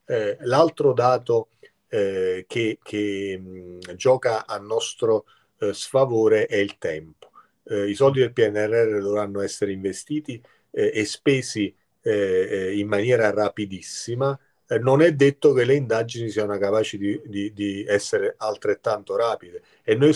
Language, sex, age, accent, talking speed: Italian, male, 40-59, native, 135 wpm